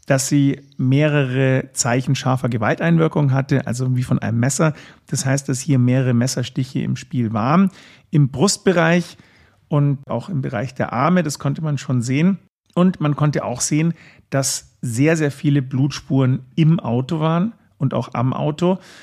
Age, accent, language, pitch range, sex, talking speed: 40-59, German, German, 130-155 Hz, male, 160 wpm